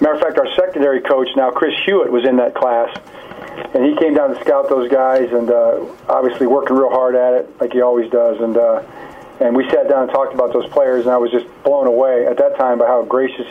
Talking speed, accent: 250 wpm, American